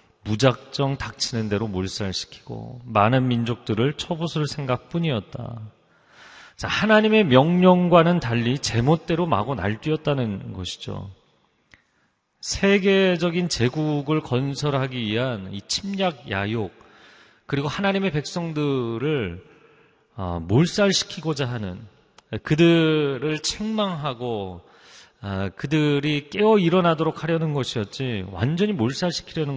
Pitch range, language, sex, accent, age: 115-160 Hz, Korean, male, native, 40-59